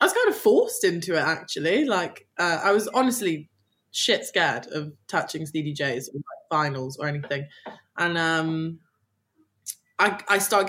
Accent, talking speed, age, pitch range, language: British, 150 wpm, 20-39, 165-200 Hz, English